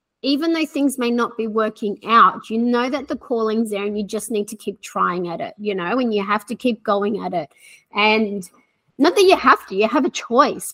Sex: female